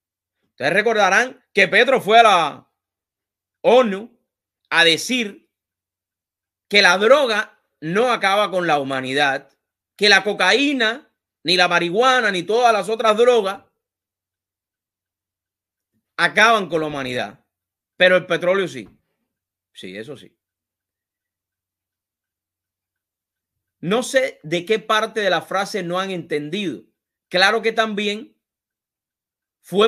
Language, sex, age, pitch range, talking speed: English, male, 30-49, 160-225 Hz, 110 wpm